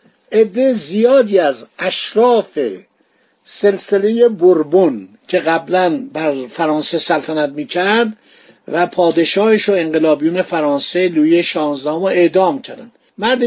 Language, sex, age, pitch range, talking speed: Persian, male, 60-79, 175-225 Hz, 100 wpm